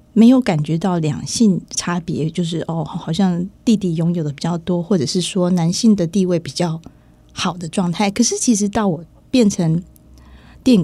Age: 20-39